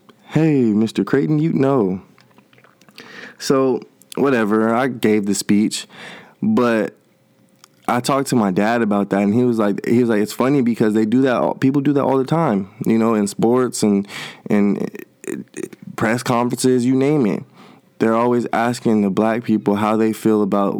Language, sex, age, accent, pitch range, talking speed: English, male, 20-39, American, 105-130 Hz, 175 wpm